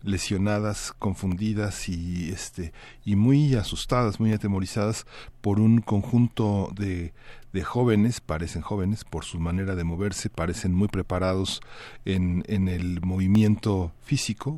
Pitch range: 95-110 Hz